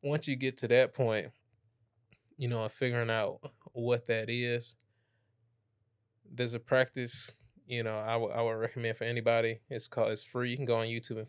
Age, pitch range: 20-39, 110-125 Hz